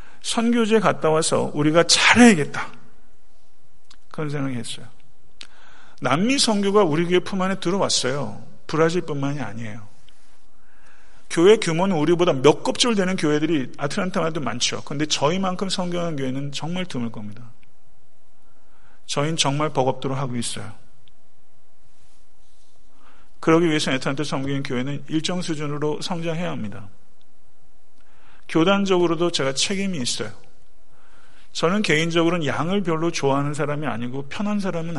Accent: native